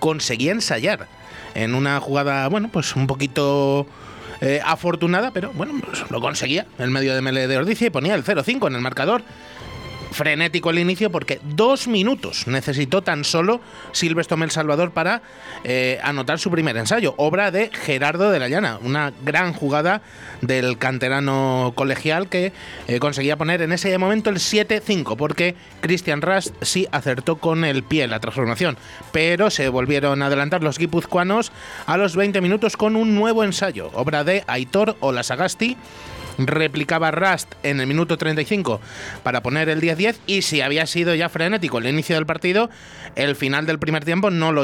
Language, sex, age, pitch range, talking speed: Spanish, male, 30-49, 135-180 Hz, 165 wpm